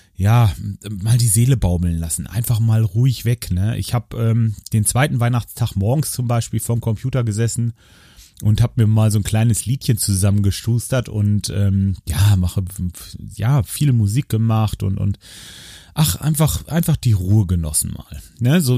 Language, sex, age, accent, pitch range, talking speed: German, male, 30-49, German, 100-130 Hz, 165 wpm